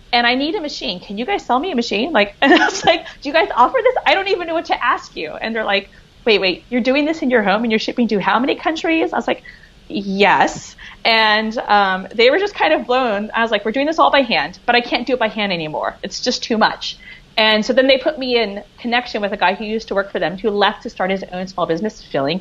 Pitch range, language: 205-255 Hz, English